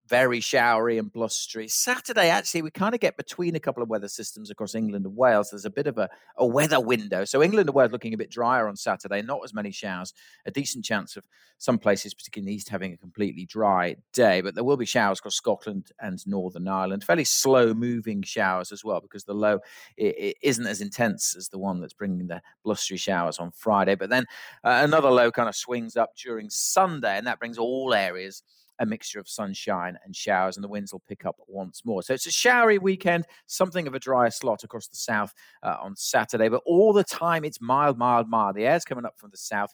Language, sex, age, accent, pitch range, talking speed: English, male, 40-59, British, 100-140 Hz, 225 wpm